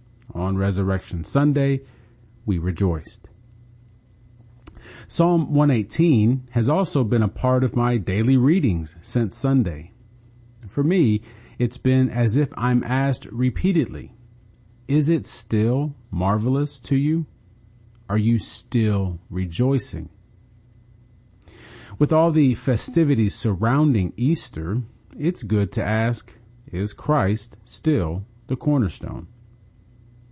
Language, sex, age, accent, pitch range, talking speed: English, male, 40-59, American, 105-125 Hz, 105 wpm